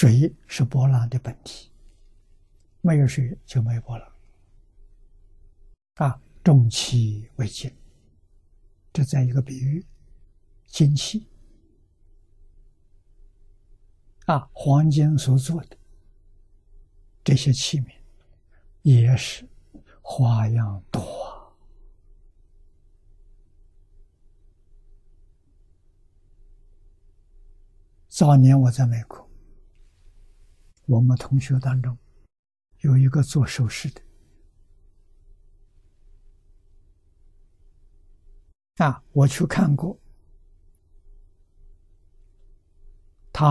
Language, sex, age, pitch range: Chinese, male, 60-79, 80-125 Hz